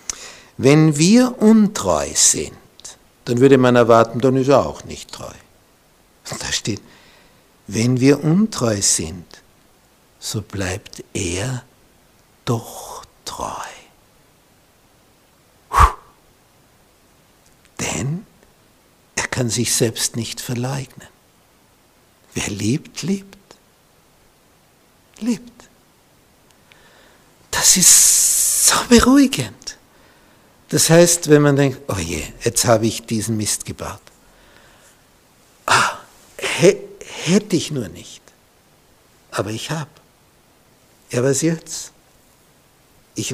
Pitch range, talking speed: 115-155 Hz, 95 wpm